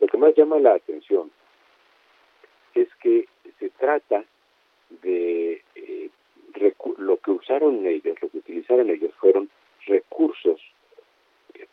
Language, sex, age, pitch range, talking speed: Spanish, male, 50-69, 365-430 Hz, 125 wpm